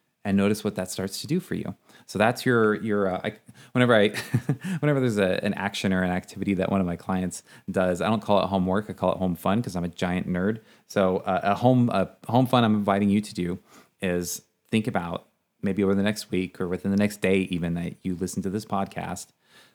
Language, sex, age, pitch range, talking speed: English, male, 30-49, 90-110 Hz, 235 wpm